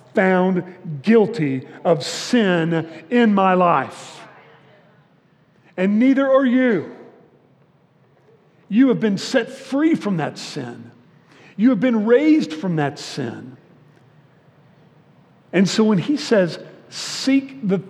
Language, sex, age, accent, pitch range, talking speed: English, male, 50-69, American, 155-205 Hz, 110 wpm